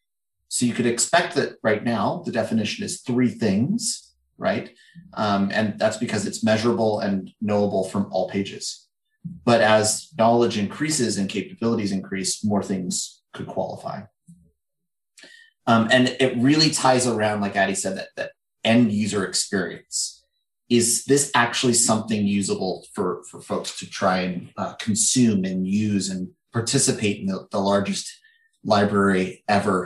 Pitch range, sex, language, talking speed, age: 105-130 Hz, male, English, 145 wpm, 30-49